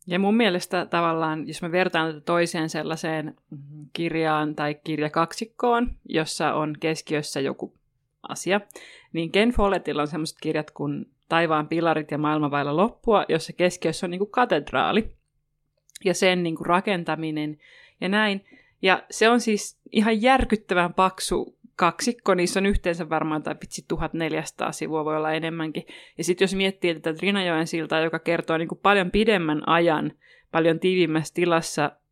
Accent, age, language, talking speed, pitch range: native, 30-49, Finnish, 140 wpm, 155-195 Hz